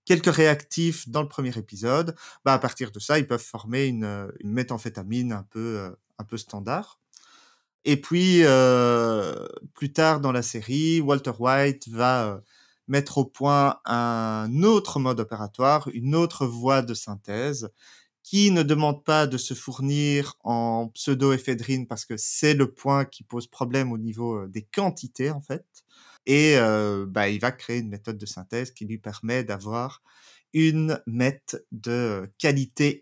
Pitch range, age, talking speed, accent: 115-145 Hz, 30-49, 160 wpm, French